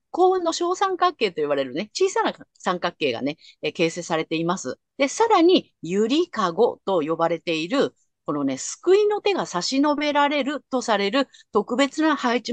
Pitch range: 195-320 Hz